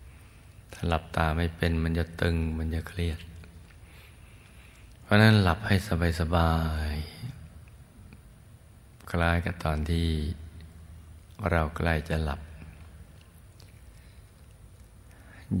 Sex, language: male, Thai